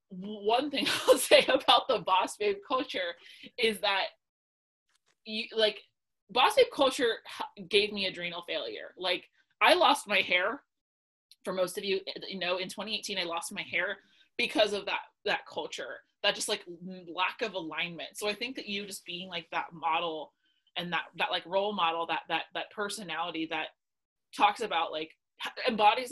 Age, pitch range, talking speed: 20-39, 175-230 Hz, 165 wpm